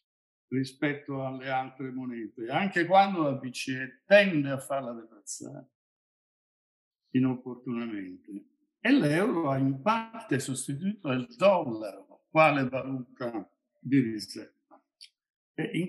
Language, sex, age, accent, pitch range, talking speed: Italian, male, 60-79, native, 130-195 Hz, 100 wpm